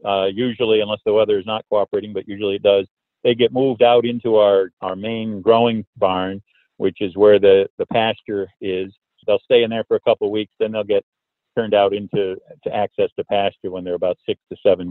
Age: 50-69